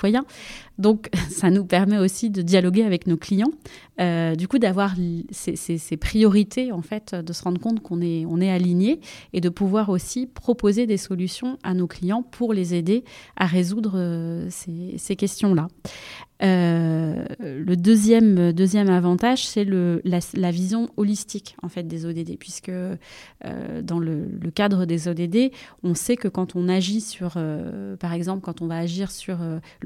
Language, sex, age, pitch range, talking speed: French, female, 30-49, 170-210 Hz, 170 wpm